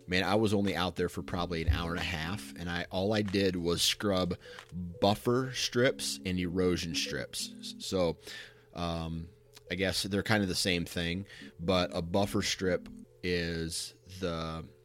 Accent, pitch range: American, 85-100 Hz